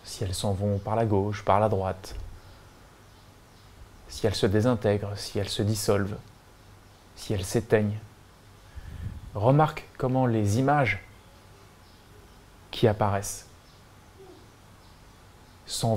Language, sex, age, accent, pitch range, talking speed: French, male, 20-39, French, 100-115 Hz, 105 wpm